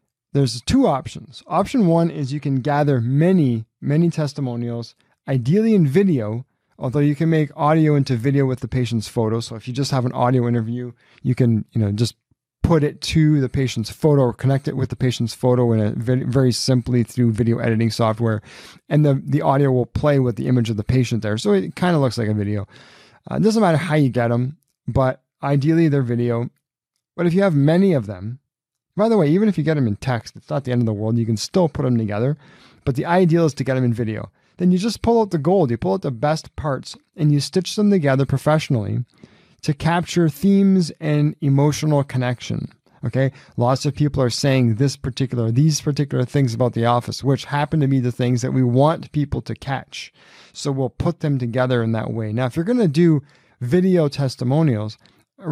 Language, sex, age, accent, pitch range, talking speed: English, male, 20-39, American, 120-155 Hz, 215 wpm